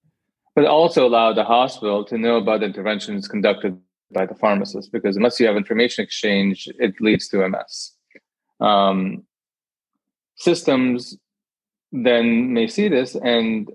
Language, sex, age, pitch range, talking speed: English, male, 20-39, 105-135 Hz, 130 wpm